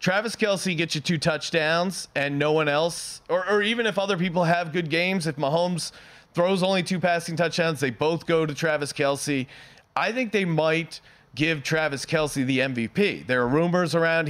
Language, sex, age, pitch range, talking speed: English, male, 30-49, 145-175 Hz, 190 wpm